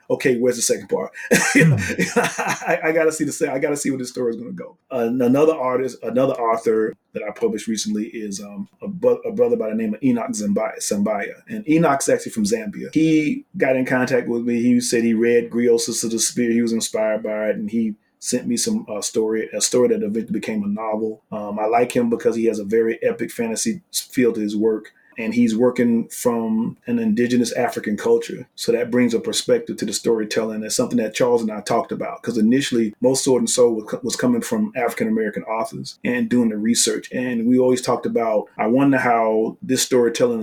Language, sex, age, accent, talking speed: English, male, 30-49, American, 215 wpm